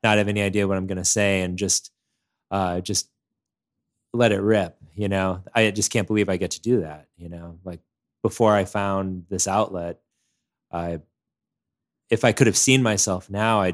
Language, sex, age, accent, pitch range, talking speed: English, male, 20-39, American, 85-105 Hz, 190 wpm